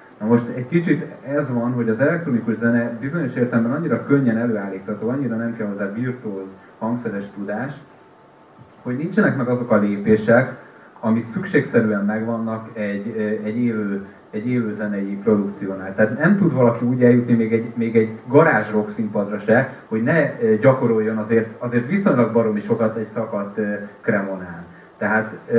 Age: 30-49